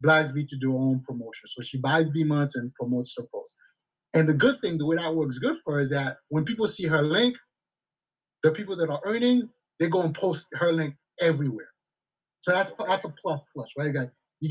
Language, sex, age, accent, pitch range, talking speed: English, male, 30-49, American, 145-190 Hz, 215 wpm